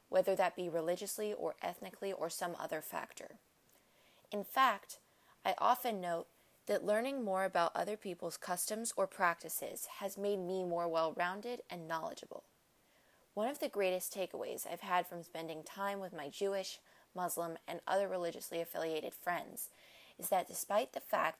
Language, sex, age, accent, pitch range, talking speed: English, female, 20-39, American, 175-205 Hz, 155 wpm